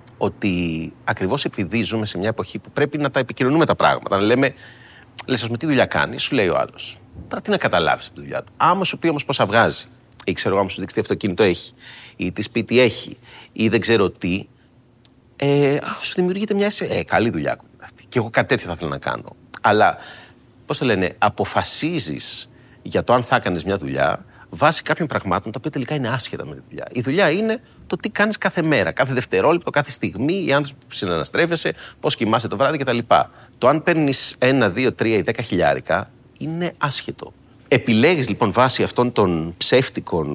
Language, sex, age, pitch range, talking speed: Greek, male, 30-49, 110-145 Hz, 200 wpm